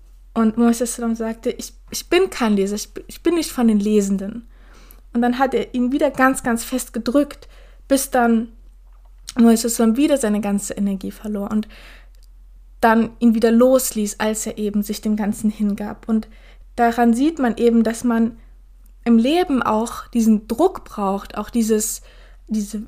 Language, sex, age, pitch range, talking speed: German, female, 20-39, 220-255 Hz, 160 wpm